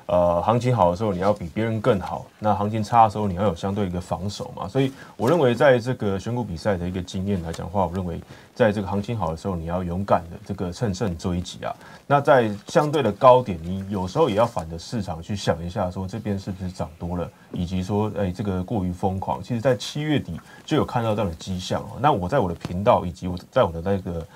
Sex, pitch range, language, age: male, 90-110 Hz, Chinese, 30-49